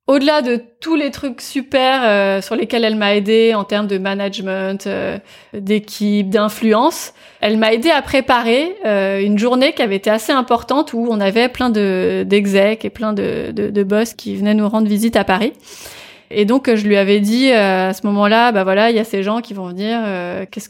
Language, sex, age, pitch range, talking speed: French, female, 20-39, 200-245 Hz, 215 wpm